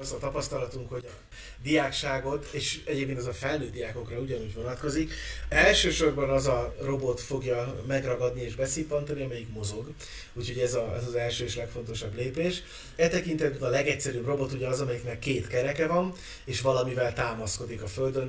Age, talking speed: 30-49, 155 wpm